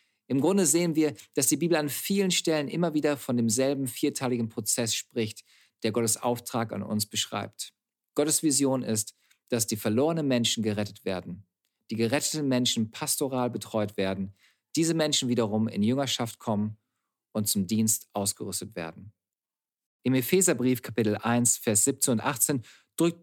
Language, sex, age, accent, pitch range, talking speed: German, male, 40-59, German, 110-150 Hz, 150 wpm